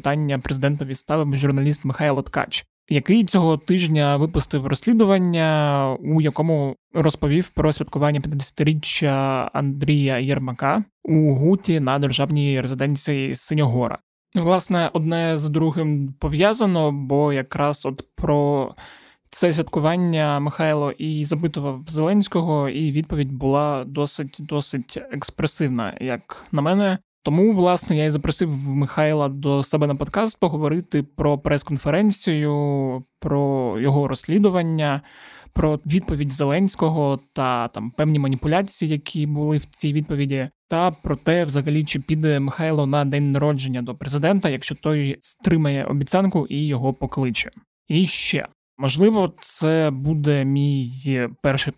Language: Ukrainian